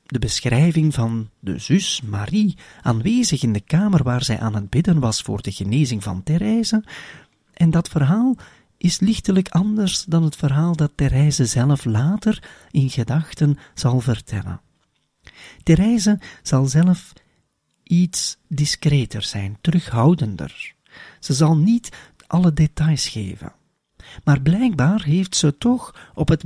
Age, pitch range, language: 40-59, 130-180 Hz, Dutch